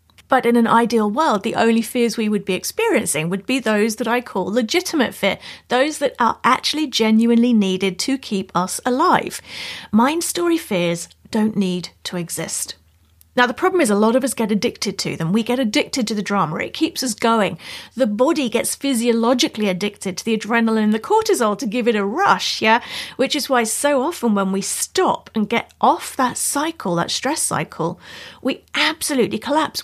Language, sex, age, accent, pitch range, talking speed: English, female, 40-59, British, 210-270 Hz, 190 wpm